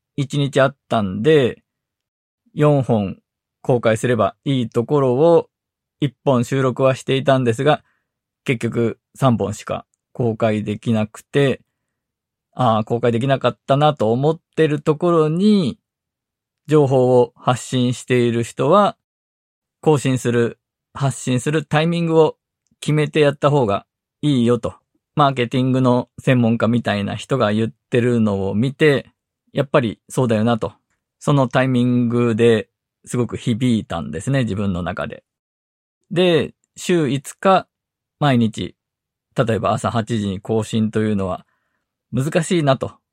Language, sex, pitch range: Japanese, male, 115-150 Hz